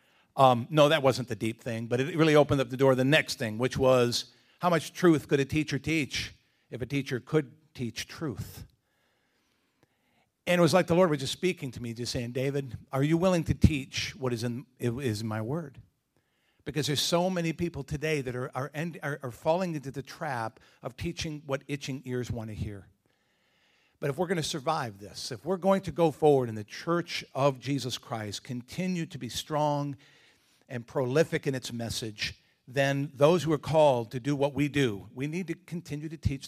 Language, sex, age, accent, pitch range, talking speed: English, male, 50-69, American, 120-155 Hz, 210 wpm